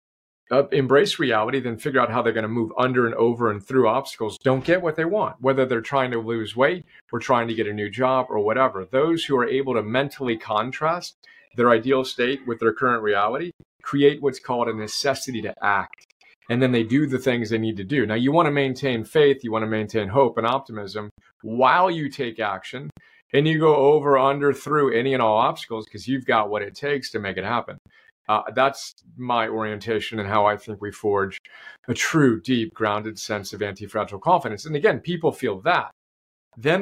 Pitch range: 110-140 Hz